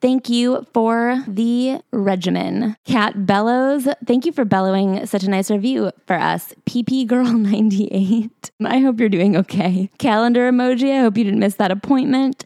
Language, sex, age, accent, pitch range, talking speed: English, female, 20-39, American, 200-250 Hz, 165 wpm